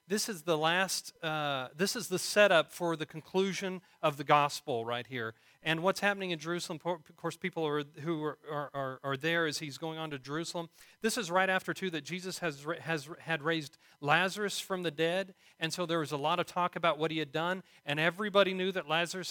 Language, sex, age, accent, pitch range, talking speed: English, male, 40-59, American, 145-180 Hz, 220 wpm